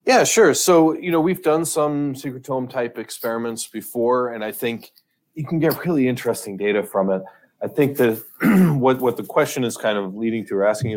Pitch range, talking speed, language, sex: 95-130 Hz, 200 wpm, English, male